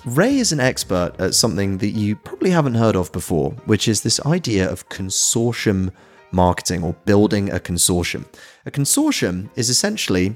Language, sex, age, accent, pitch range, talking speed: English, male, 30-49, British, 90-120 Hz, 160 wpm